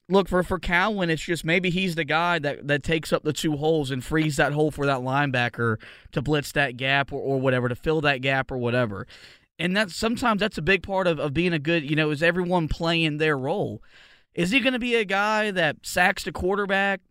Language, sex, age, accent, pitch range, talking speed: English, male, 20-39, American, 145-180 Hz, 230 wpm